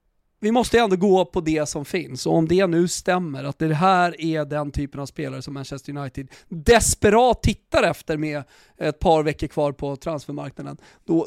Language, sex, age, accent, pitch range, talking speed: Swedish, male, 30-49, native, 150-195 Hz, 185 wpm